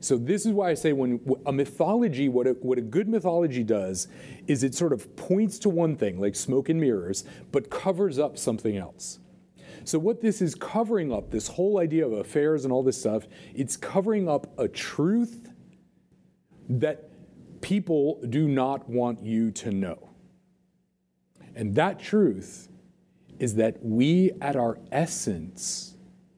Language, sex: English, male